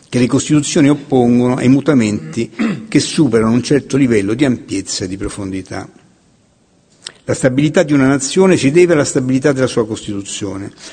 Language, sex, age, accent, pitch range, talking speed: Italian, male, 60-79, native, 105-140 Hz, 155 wpm